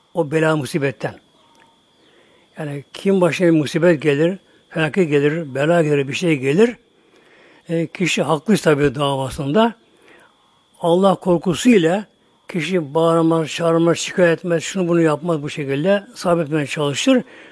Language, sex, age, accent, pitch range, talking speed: Turkish, male, 60-79, native, 160-200 Hz, 115 wpm